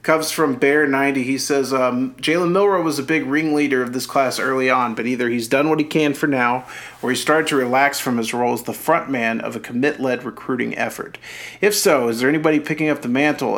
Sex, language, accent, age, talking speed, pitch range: male, English, American, 40-59, 230 wpm, 125-150 Hz